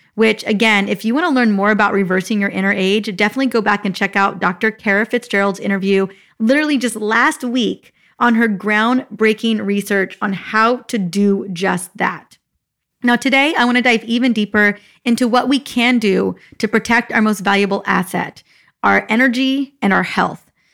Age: 30-49